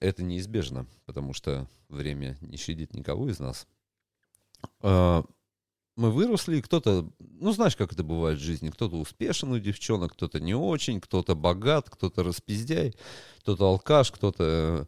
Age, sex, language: 40-59, male, Russian